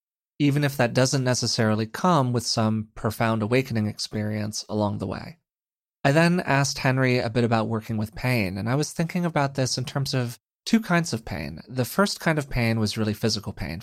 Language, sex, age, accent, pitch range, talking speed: English, male, 30-49, American, 110-140 Hz, 200 wpm